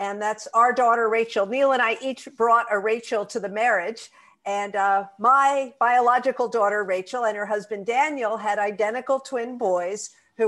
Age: 50-69